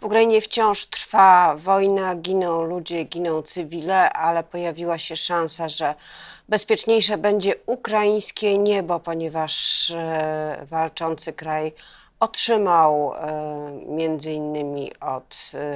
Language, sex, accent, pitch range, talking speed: Polish, female, native, 150-180 Hz, 90 wpm